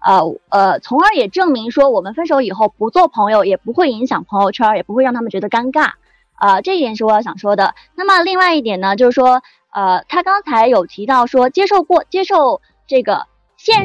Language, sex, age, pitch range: Chinese, female, 20-39, 225-335 Hz